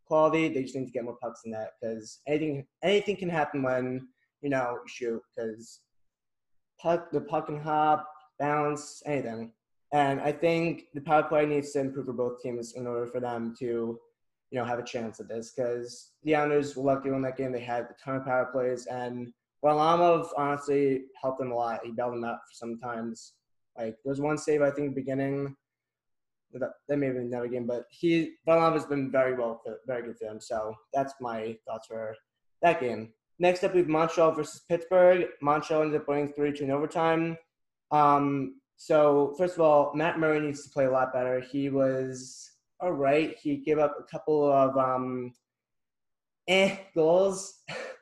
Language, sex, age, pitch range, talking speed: English, male, 20-39, 125-155 Hz, 195 wpm